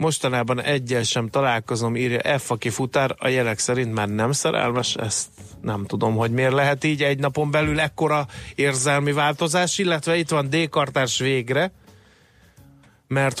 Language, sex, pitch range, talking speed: Hungarian, male, 120-150 Hz, 150 wpm